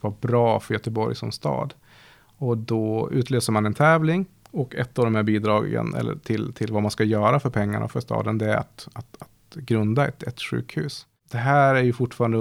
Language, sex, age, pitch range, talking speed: Swedish, male, 30-49, 105-125 Hz, 200 wpm